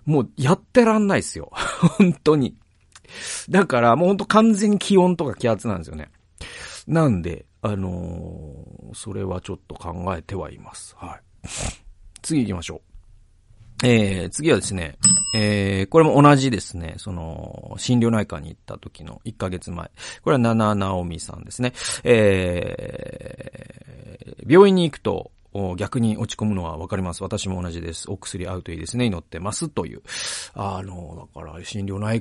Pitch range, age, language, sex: 90-115 Hz, 40-59, Japanese, male